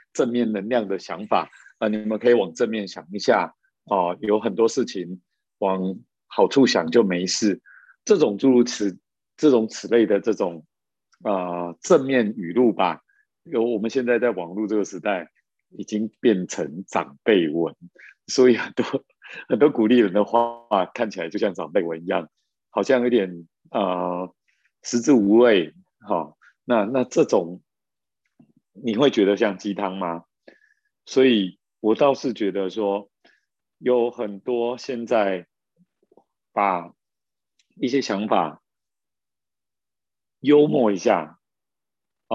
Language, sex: Chinese, male